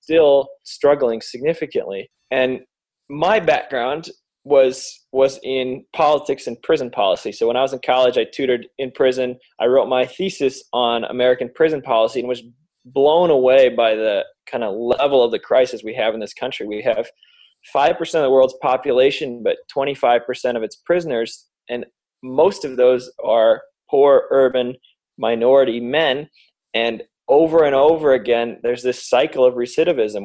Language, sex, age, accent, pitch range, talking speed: English, male, 20-39, American, 125-180 Hz, 155 wpm